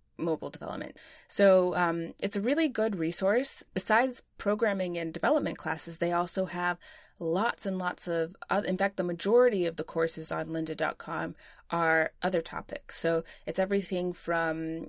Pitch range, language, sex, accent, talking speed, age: 165-190 Hz, English, female, American, 155 wpm, 20-39